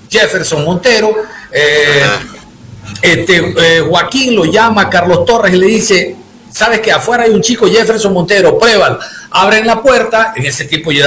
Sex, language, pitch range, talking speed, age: male, Spanish, 175-225 Hz, 155 wpm, 50-69